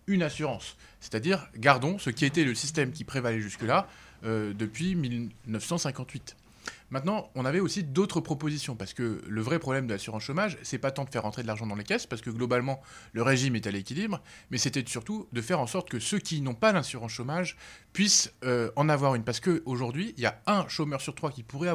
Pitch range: 115-170 Hz